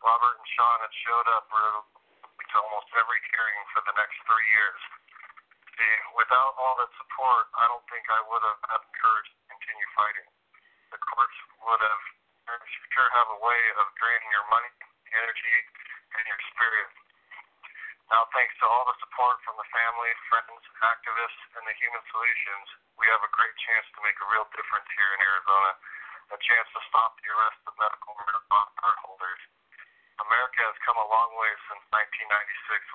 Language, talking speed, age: English, 170 wpm, 40-59